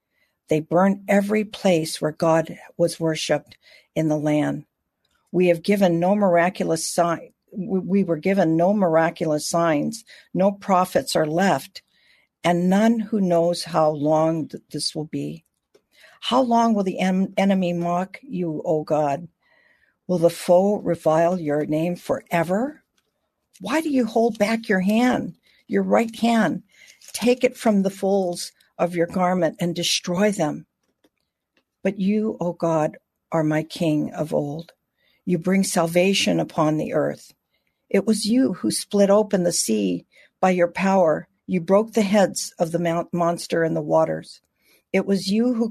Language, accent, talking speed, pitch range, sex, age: English, American, 150 wpm, 160-195 Hz, female, 50-69